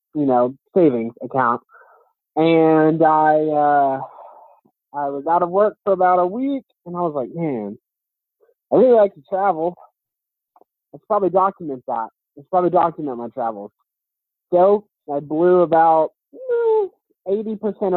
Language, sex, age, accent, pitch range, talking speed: English, male, 20-39, American, 140-180 Hz, 135 wpm